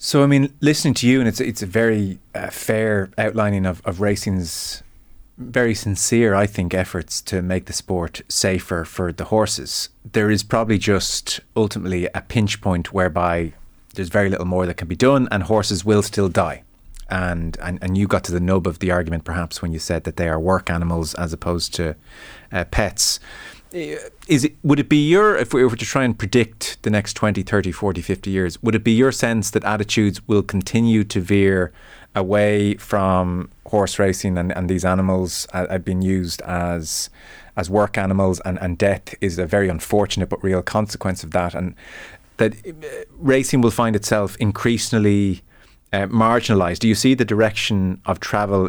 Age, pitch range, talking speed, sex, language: 30-49, 90-110 Hz, 185 wpm, male, English